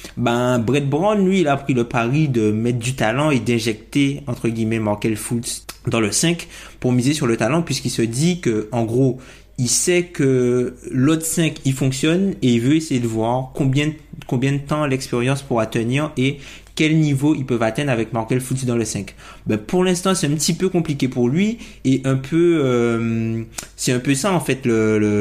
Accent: French